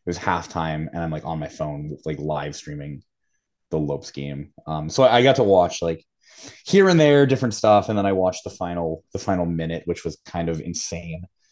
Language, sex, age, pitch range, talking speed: English, male, 20-39, 90-125 Hz, 215 wpm